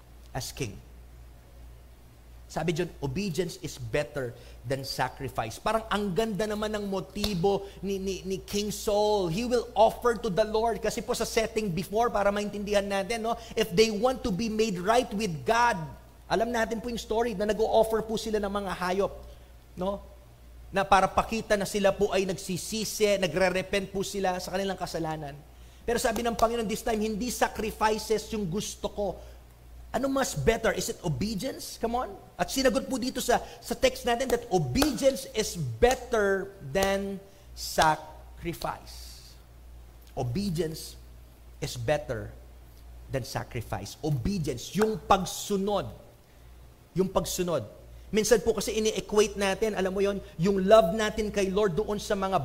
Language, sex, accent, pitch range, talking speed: English, male, Filipino, 140-220 Hz, 150 wpm